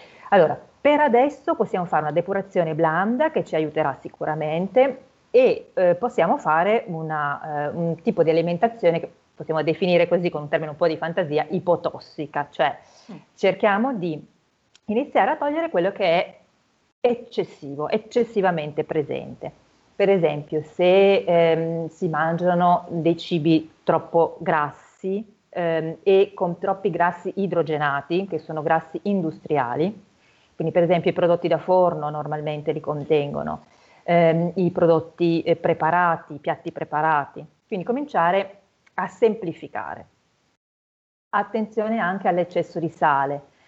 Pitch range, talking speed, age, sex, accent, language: 160-195 Hz, 125 wpm, 40-59, female, native, Italian